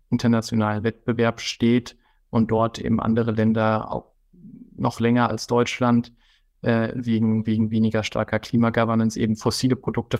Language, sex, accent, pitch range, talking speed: German, male, German, 115-125 Hz, 130 wpm